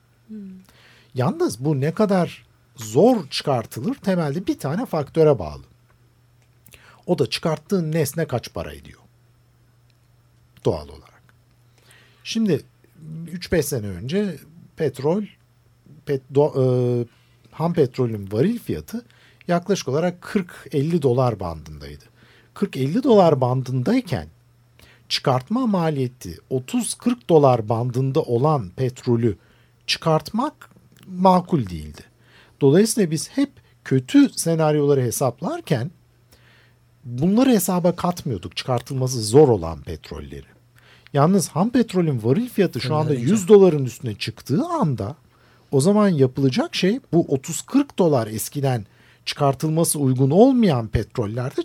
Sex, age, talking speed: male, 50-69, 100 wpm